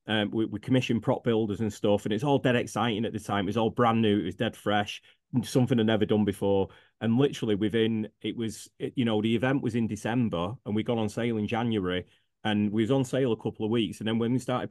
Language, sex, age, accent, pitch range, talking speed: English, male, 30-49, British, 105-125 Hz, 260 wpm